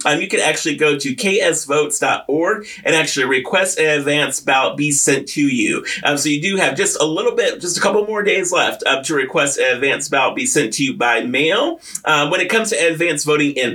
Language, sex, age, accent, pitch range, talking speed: English, male, 30-49, American, 145-190 Hz, 225 wpm